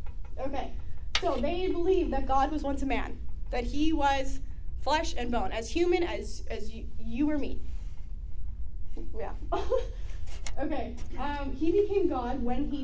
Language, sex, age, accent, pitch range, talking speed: English, female, 10-29, American, 225-280 Hz, 150 wpm